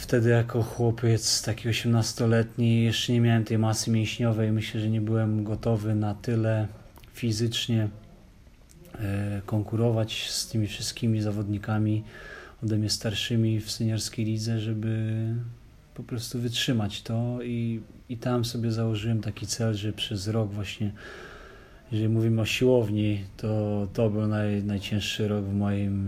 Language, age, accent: English, 30-49, Polish